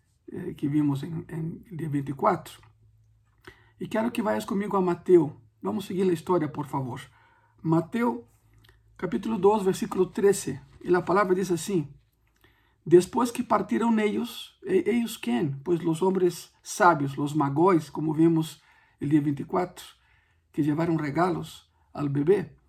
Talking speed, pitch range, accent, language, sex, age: 145 wpm, 145-205 Hz, Brazilian, Spanish, male, 50-69